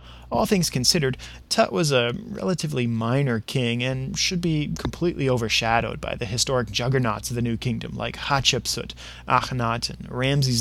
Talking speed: 155 wpm